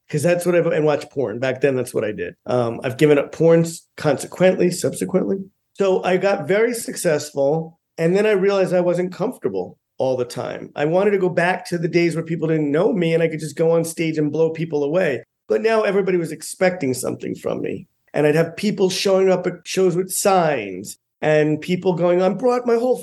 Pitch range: 150-185 Hz